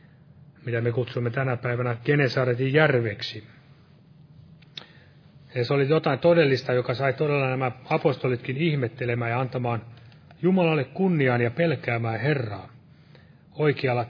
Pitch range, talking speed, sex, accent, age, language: 125-155 Hz, 110 wpm, male, native, 30-49, Finnish